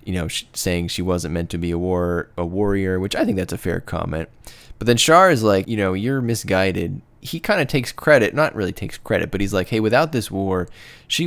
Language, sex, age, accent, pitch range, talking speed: English, male, 20-39, American, 90-115 Hz, 235 wpm